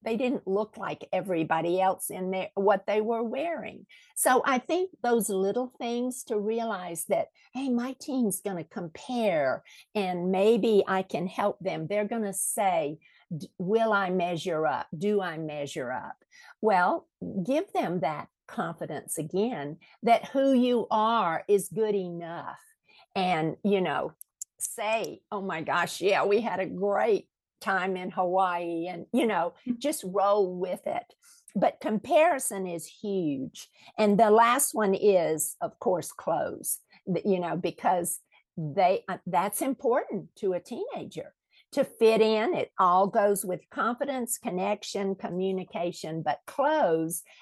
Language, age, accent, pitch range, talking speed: English, 50-69, American, 180-230 Hz, 140 wpm